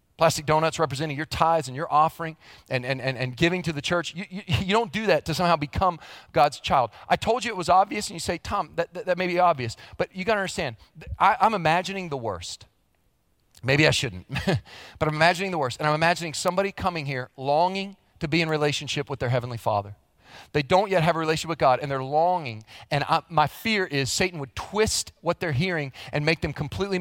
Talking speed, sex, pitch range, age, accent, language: 225 wpm, male, 120-165 Hz, 40-59, American, English